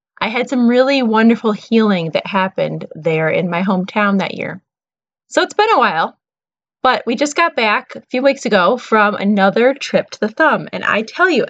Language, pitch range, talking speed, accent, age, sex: English, 205-275 Hz, 200 wpm, American, 20-39, female